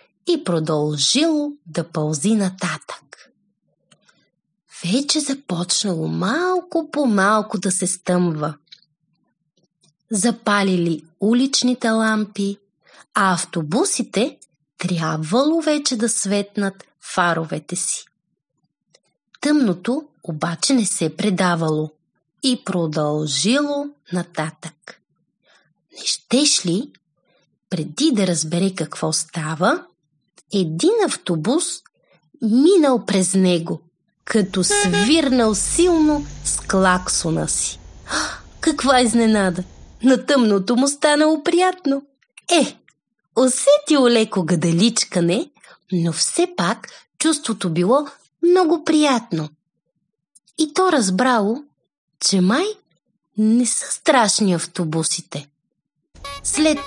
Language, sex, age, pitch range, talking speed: Bulgarian, female, 30-49, 175-275 Hz, 85 wpm